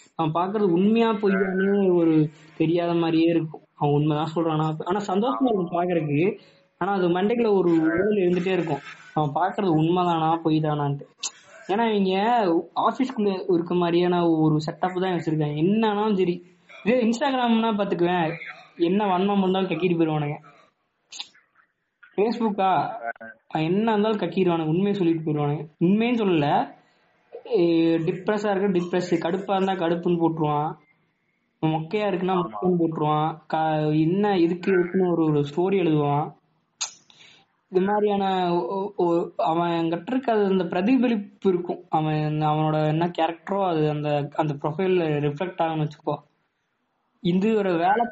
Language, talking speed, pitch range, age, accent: Tamil, 70 wpm, 160-195 Hz, 20-39, native